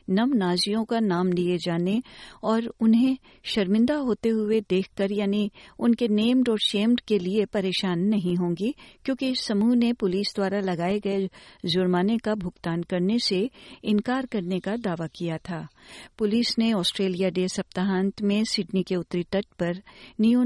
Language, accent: Hindi, native